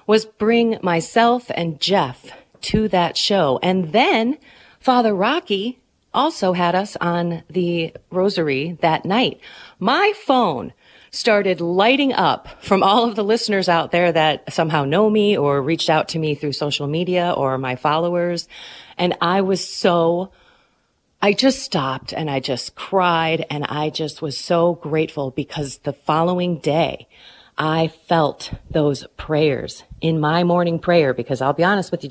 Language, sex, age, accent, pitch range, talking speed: English, female, 30-49, American, 145-195 Hz, 155 wpm